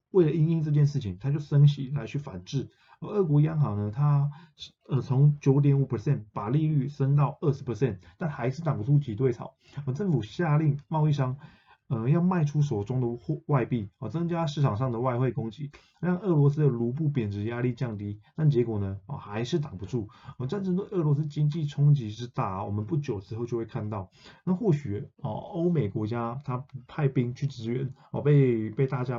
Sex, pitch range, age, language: male, 115-145 Hz, 20-39, Chinese